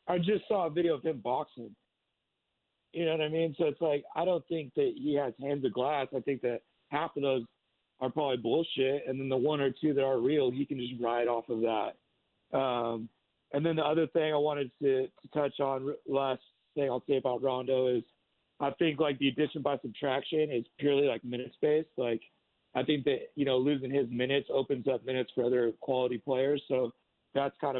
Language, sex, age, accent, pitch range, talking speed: English, male, 50-69, American, 125-145 Hz, 215 wpm